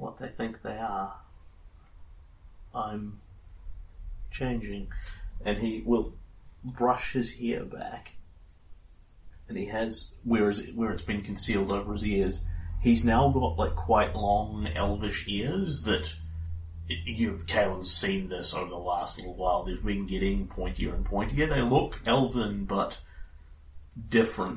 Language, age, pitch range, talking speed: English, 30-49, 80-105 Hz, 135 wpm